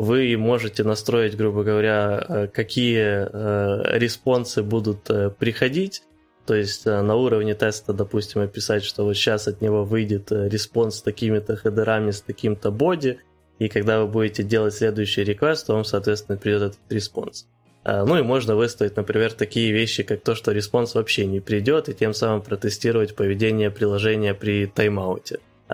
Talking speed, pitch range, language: 150 wpm, 105-115 Hz, Ukrainian